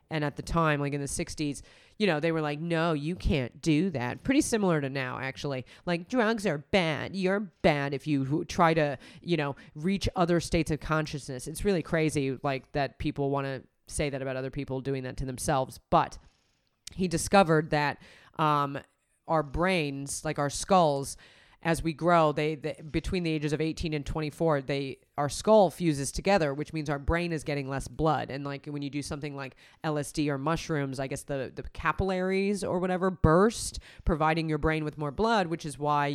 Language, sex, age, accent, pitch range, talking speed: English, female, 30-49, American, 145-170 Hz, 195 wpm